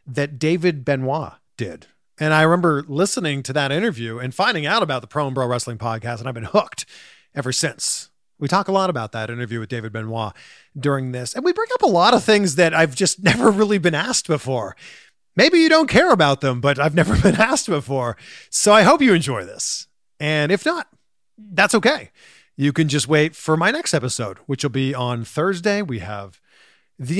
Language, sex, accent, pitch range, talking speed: English, male, American, 130-200 Hz, 205 wpm